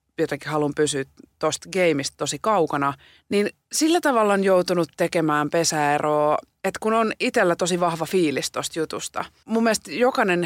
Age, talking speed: 30-49, 150 wpm